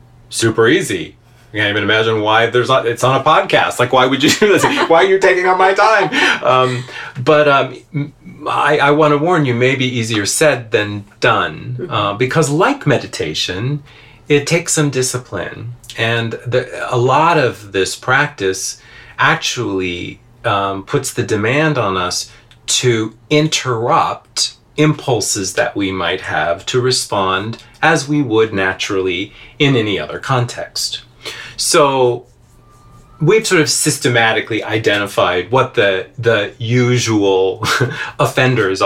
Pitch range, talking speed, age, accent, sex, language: 105-145 Hz, 140 wpm, 40-59, American, male, English